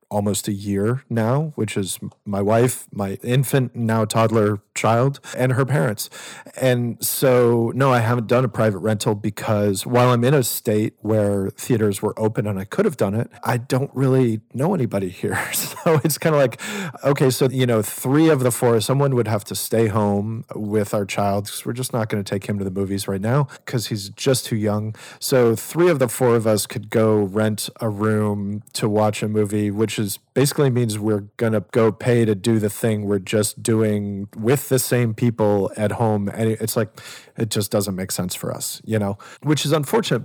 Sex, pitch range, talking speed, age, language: male, 105-125 Hz, 205 wpm, 40-59, English